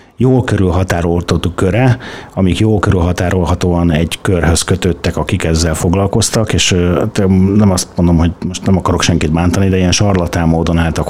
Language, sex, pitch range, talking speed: Hungarian, male, 85-100 Hz, 145 wpm